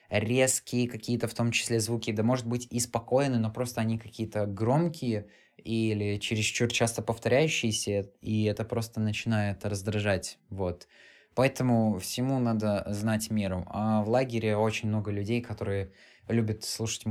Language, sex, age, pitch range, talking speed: Russian, male, 20-39, 100-115 Hz, 140 wpm